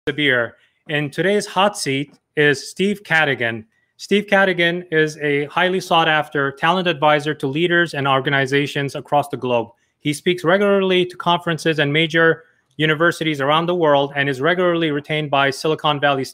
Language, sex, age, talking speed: English, male, 30-49, 155 wpm